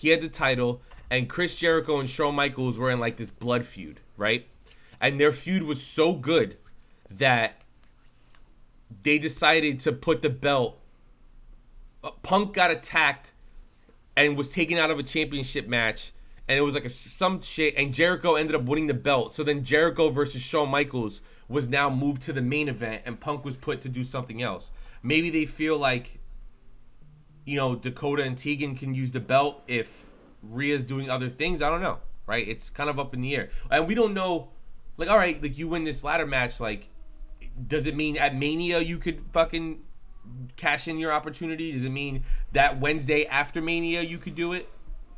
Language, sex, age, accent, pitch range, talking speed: English, male, 20-39, American, 125-155 Hz, 185 wpm